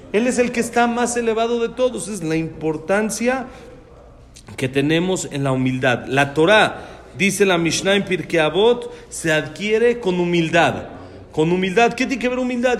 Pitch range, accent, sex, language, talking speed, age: 135-215 Hz, Mexican, male, Spanish, 165 wpm, 40-59